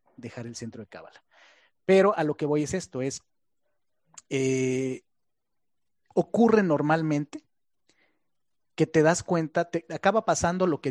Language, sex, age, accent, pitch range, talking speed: Spanish, male, 30-49, Mexican, 130-170 Hz, 140 wpm